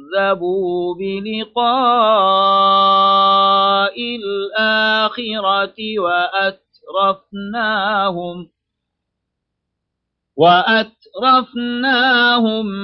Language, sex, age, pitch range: Arabic, male, 40-59, 165-220 Hz